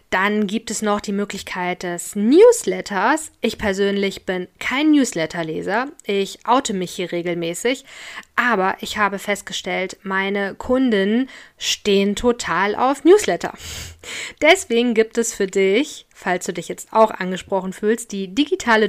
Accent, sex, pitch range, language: German, female, 190-240 Hz, German